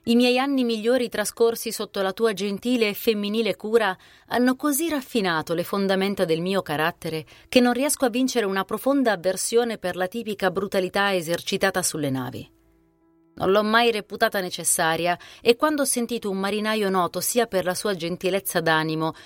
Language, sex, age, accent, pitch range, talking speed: Italian, female, 30-49, native, 165-225 Hz, 165 wpm